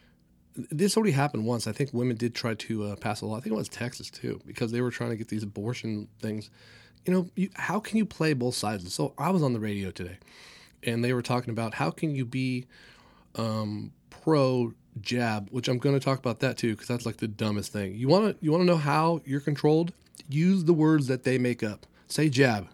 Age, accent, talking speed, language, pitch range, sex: 30-49, American, 230 wpm, English, 110-155 Hz, male